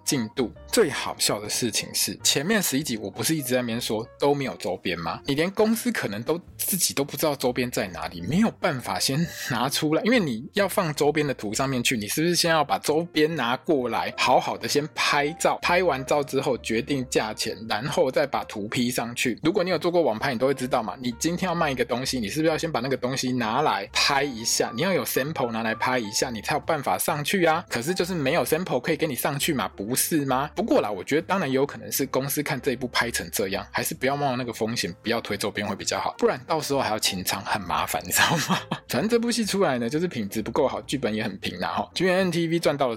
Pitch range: 120-160 Hz